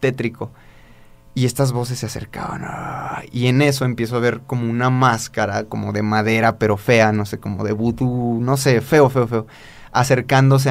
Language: Spanish